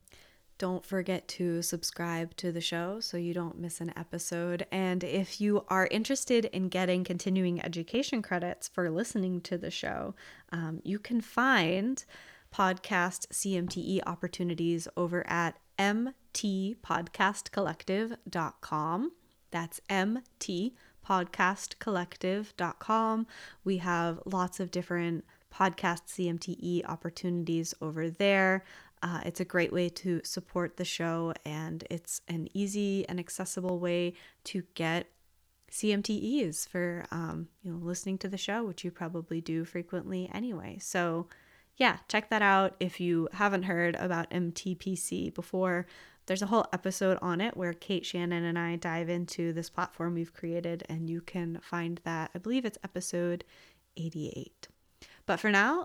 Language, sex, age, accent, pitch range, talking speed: English, female, 20-39, American, 170-195 Hz, 135 wpm